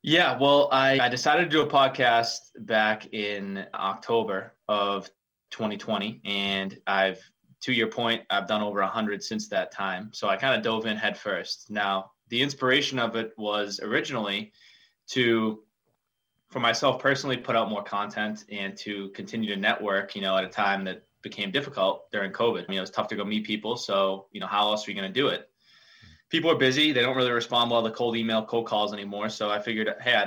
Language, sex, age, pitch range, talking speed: English, male, 20-39, 100-120 Hz, 200 wpm